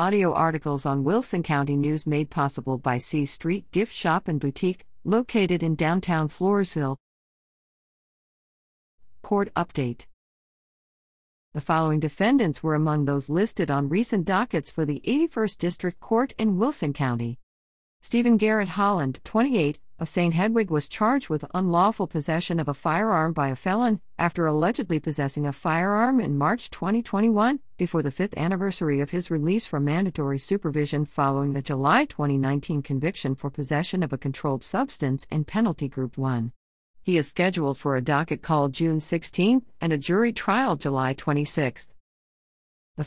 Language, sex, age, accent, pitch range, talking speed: English, female, 50-69, American, 140-195 Hz, 150 wpm